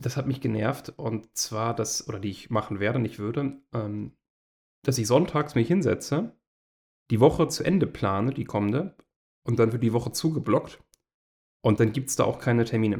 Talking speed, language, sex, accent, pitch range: 190 wpm, German, male, German, 100-125 Hz